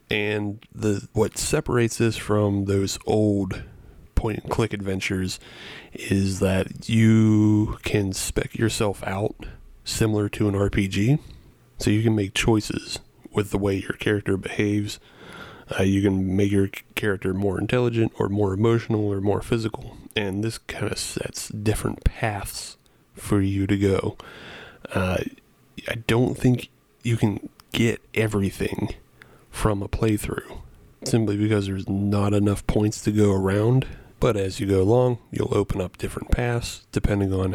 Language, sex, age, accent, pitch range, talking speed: English, male, 30-49, American, 100-110 Hz, 140 wpm